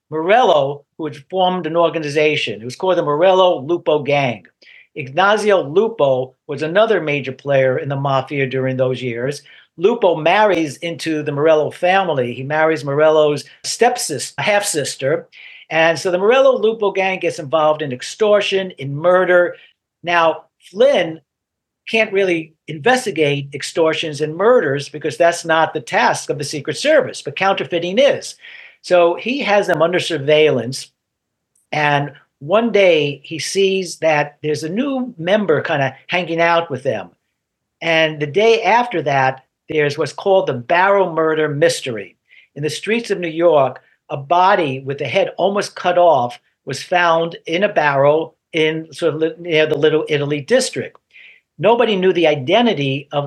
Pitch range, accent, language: 145-190 Hz, American, English